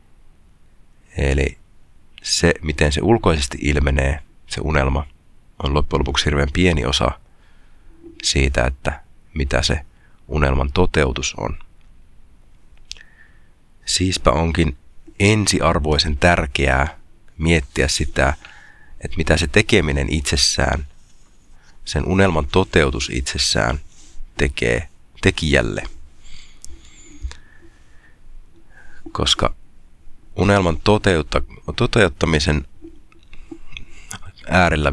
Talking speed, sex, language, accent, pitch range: 75 wpm, male, Finnish, native, 70-85 Hz